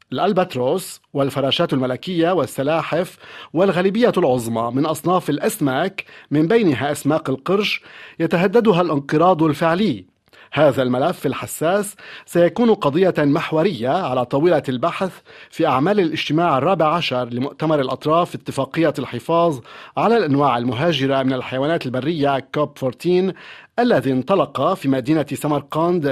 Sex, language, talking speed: male, Arabic, 110 wpm